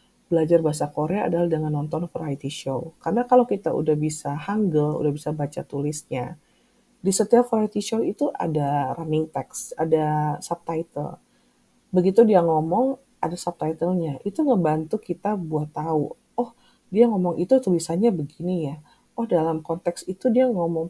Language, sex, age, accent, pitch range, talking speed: Indonesian, female, 30-49, native, 155-220 Hz, 145 wpm